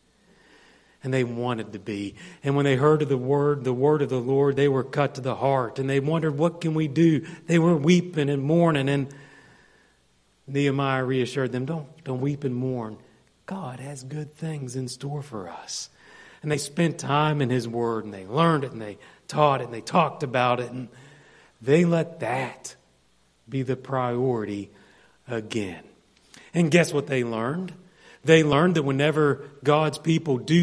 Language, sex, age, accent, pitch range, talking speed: English, male, 40-59, American, 105-145 Hz, 180 wpm